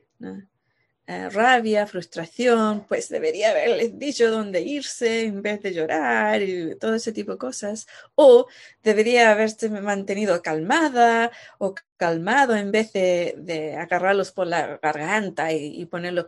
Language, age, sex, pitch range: Spanish, 20-39, female, 175-235 Hz